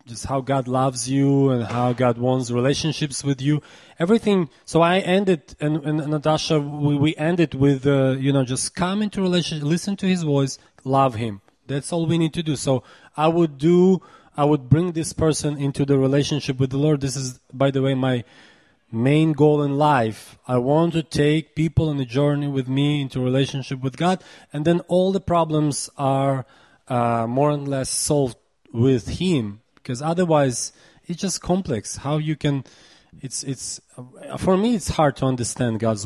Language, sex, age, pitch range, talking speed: Czech, male, 20-39, 125-155 Hz, 185 wpm